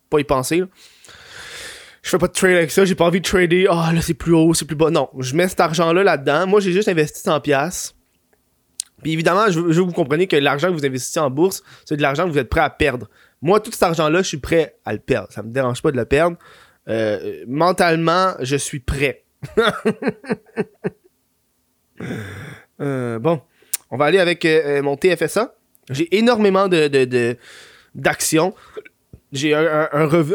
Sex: male